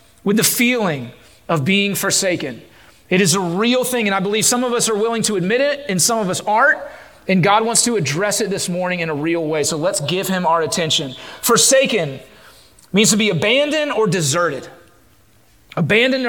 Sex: male